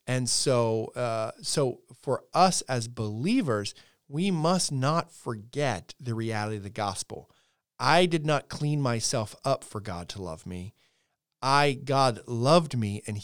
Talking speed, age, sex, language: 150 wpm, 40-59, male, English